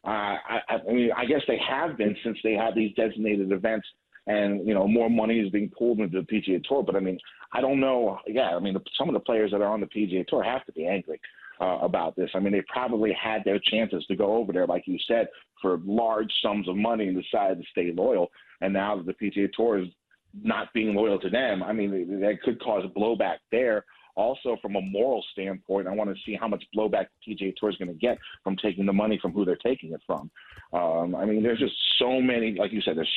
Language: English